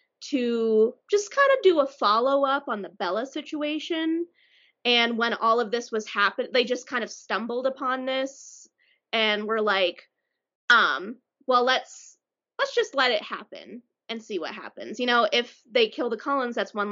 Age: 20-39